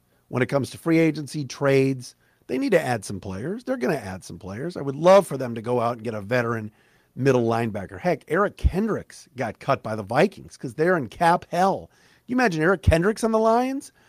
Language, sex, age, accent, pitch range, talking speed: English, male, 50-69, American, 95-165 Hz, 230 wpm